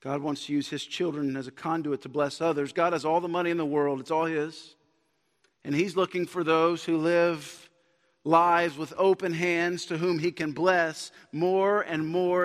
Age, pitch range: 50-69, 160-190 Hz